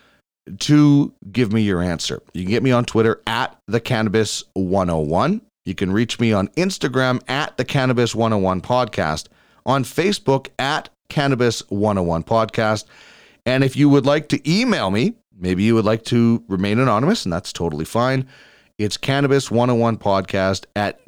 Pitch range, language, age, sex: 95-130 Hz, English, 30-49, male